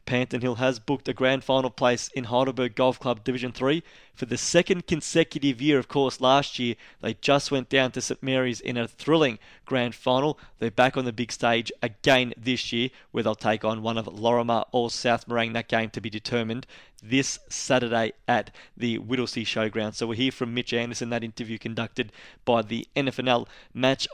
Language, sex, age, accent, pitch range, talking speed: English, male, 20-39, Australian, 120-135 Hz, 200 wpm